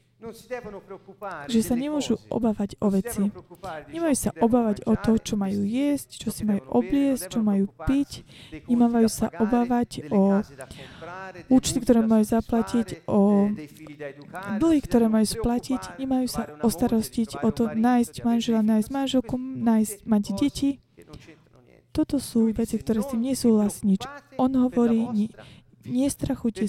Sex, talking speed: female, 125 wpm